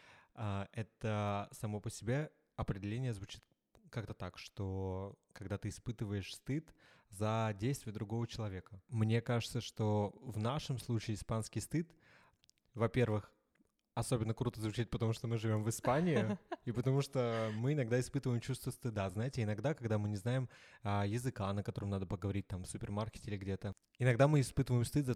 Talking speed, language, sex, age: 155 wpm, Russian, male, 20-39